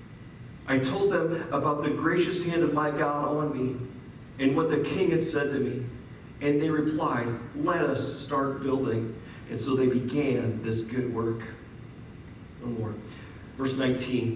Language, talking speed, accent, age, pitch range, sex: English, 160 wpm, American, 40-59, 130-175 Hz, male